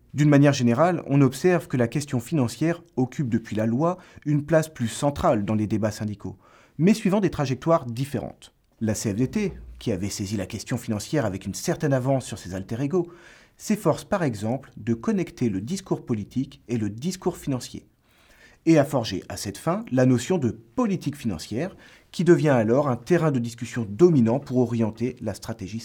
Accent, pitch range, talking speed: French, 115-155 Hz, 175 wpm